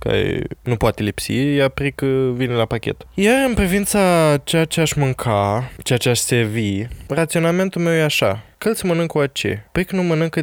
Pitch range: 115-140 Hz